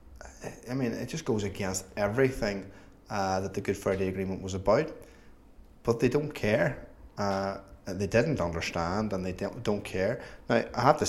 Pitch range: 95-115 Hz